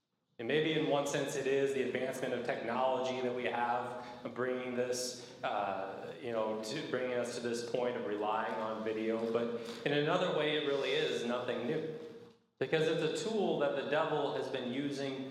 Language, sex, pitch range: English, male, 115-145 Hz